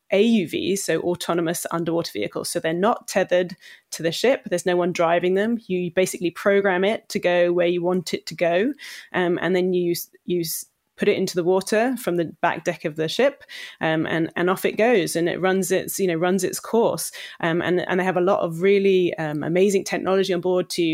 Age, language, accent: 20-39, English, British